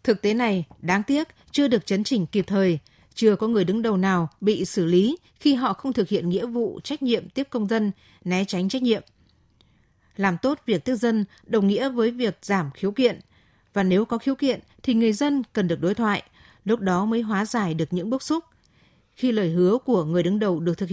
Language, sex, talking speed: Vietnamese, female, 225 wpm